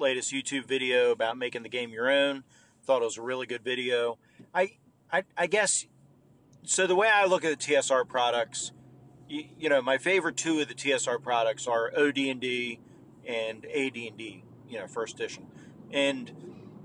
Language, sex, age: English, male, 40-59